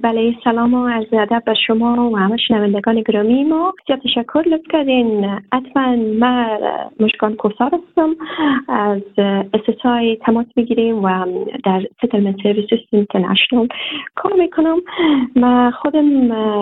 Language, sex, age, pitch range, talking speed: Persian, female, 30-49, 205-255 Hz, 125 wpm